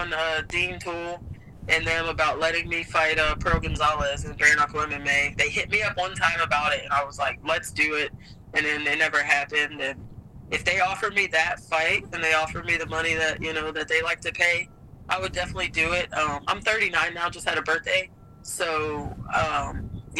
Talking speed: 215 wpm